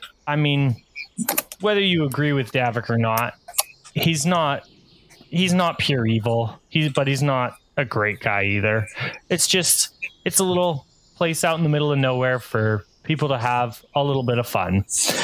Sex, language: male, English